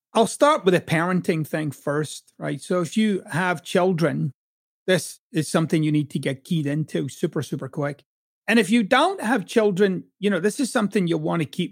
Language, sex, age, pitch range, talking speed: English, male, 30-49, 155-195 Hz, 205 wpm